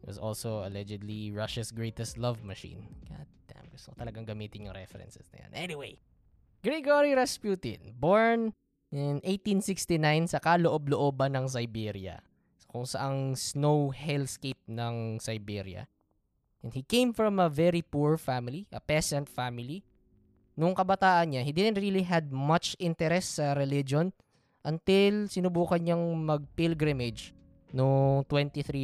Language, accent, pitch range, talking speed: Filipino, native, 115-165 Hz, 130 wpm